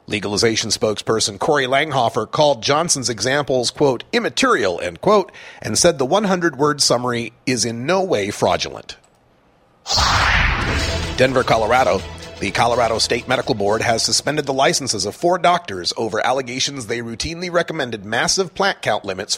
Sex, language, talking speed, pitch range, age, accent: male, English, 135 wpm, 115-140 Hz, 40-59, American